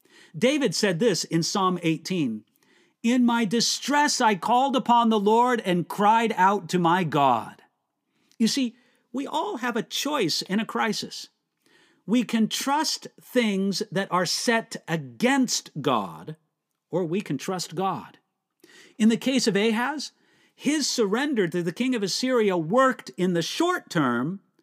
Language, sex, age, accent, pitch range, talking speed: English, male, 50-69, American, 170-245 Hz, 150 wpm